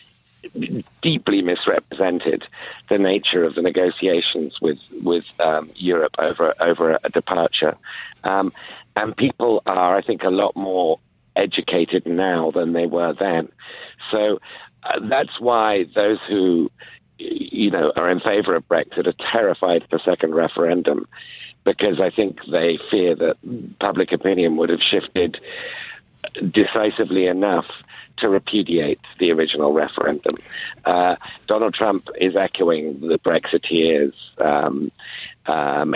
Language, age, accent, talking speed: English, 50-69, British, 125 wpm